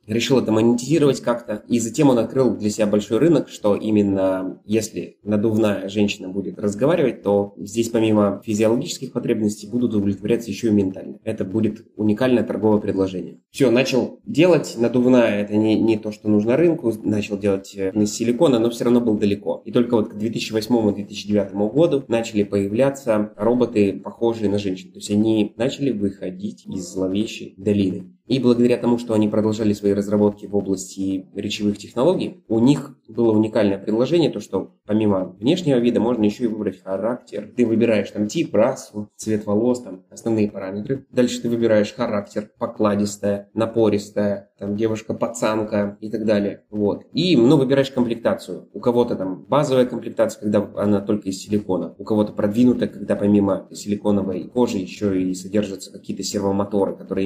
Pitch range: 100-115 Hz